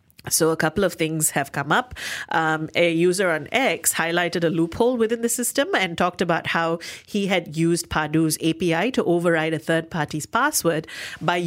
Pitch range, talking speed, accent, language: 160-205 Hz, 185 wpm, Indian, English